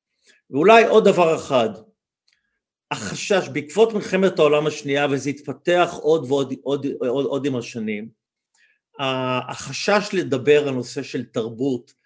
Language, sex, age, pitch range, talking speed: Hebrew, male, 50-69, 135-210 Hz, 120 wpm